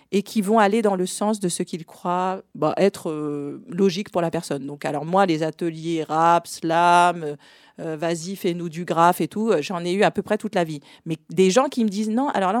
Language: French